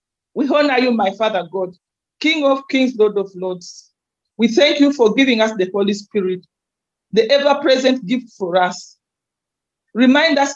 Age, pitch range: 40-59, 190-265 Hz